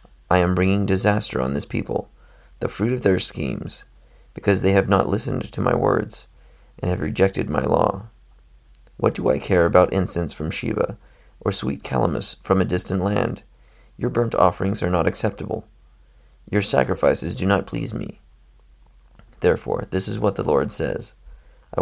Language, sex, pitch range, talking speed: English, male, 65-100 Hz, 165 wpm